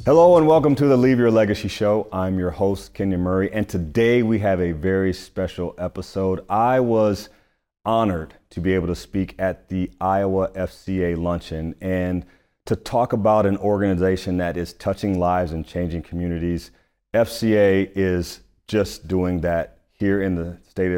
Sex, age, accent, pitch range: male, 40-59, American, 85-110 Hz